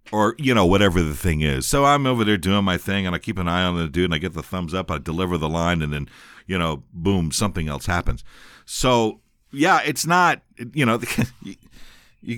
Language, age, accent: English, 50-69, American